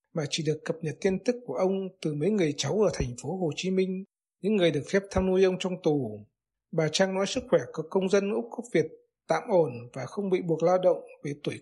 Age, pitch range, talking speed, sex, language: 60-79, 160-200 Hz, 255 wpm, male, Vietnamese